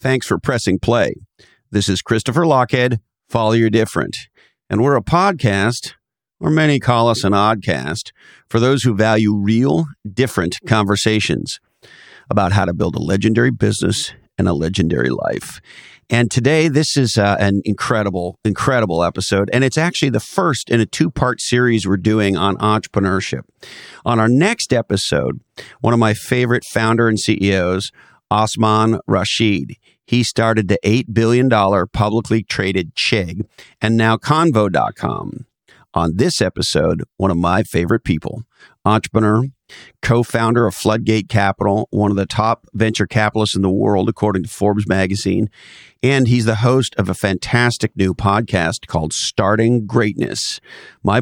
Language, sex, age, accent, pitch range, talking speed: English, male, 50-69, American, 100-120 Hz, 145 wpm